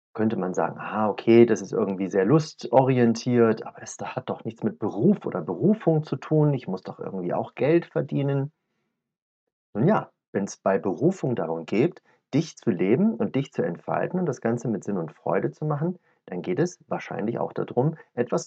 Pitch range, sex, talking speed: 110-165 Hz, male, 190 wpm